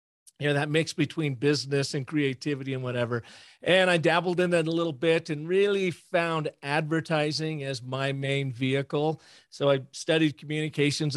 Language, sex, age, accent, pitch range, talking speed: English, male, 40-59, American, 140-155 Hz, 160 wpm